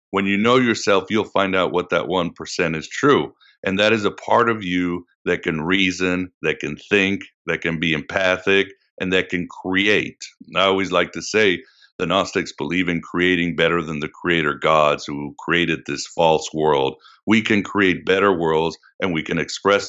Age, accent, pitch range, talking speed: 60-79, American, 85-100 Hz, 185 wpm